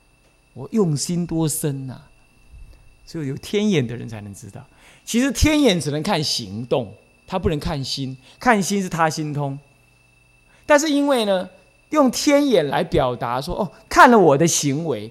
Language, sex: Chinese, male